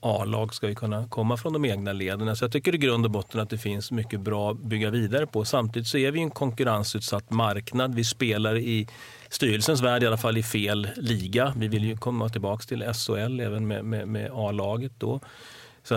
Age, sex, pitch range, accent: 40-59, male, 110-125 Hz, Swedish